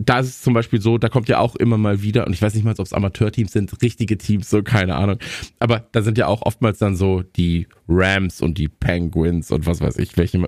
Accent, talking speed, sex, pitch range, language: German, 250 wpm, male, 95-115 Hz, German